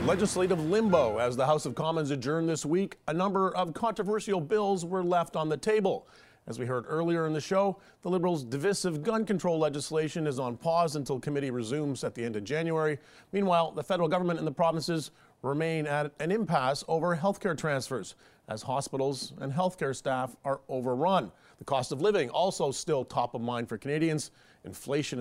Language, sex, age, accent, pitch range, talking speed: English, male, 40-59, American, 130-175 Hz, 190 wpm